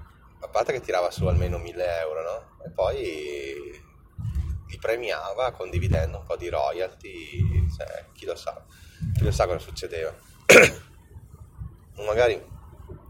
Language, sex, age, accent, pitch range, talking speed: Italian, male, 20-39, native, 85-105 Hz, 120 wpm